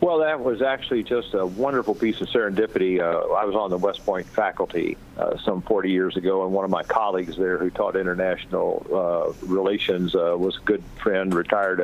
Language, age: English, 50-69